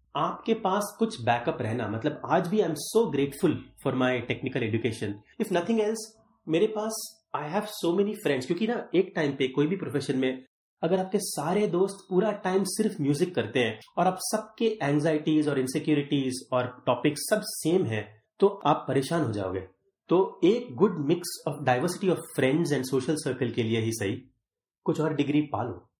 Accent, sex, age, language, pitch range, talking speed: native, male, 30-49, Hindi, 130-190 Hz, 185 wpm